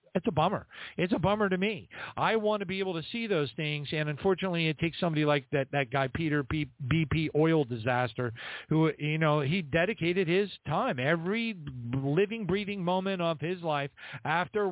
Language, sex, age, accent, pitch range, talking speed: English, male, 50-69, American, 140-170 Hz, 185 wpm